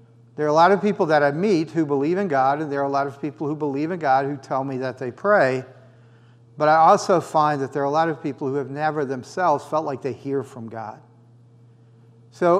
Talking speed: 250 wpm